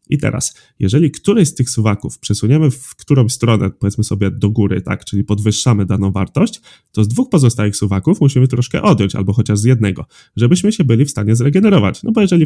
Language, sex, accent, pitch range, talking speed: Polish, male, native, 105-145 Hz, 195 wpm